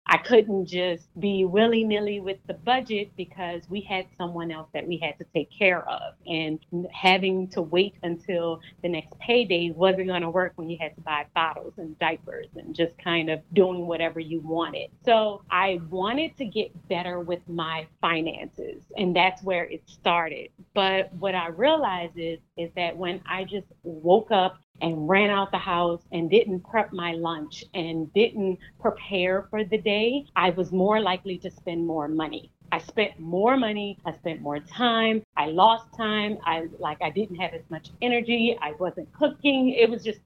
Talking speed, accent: 185 wpm, American